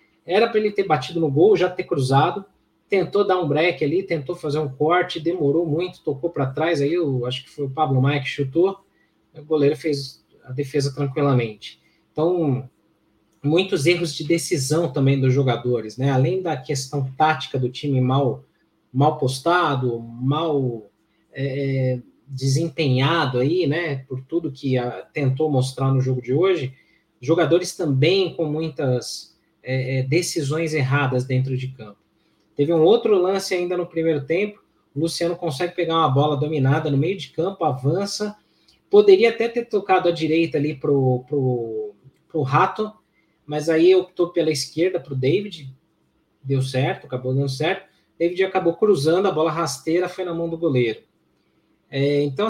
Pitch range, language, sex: 135-170 Hz, Portuguese, male